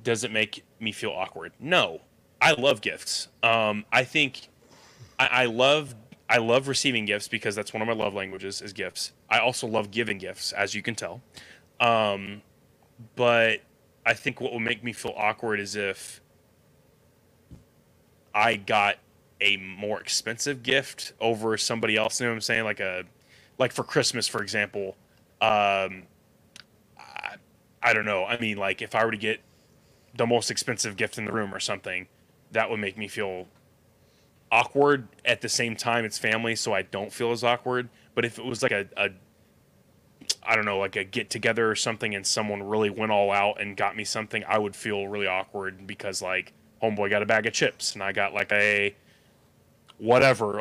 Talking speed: 185 wpm